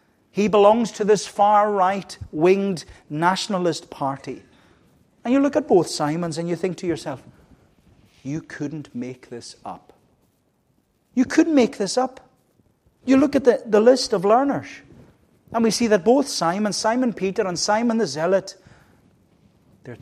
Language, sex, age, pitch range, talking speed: English, male, 40-59, 155-210 Hz, 155 wpm